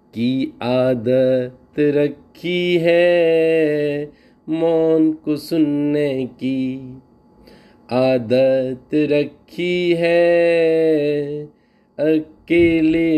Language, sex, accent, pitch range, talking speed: Hindi, male, native, 130-165 Hz, 55 wpm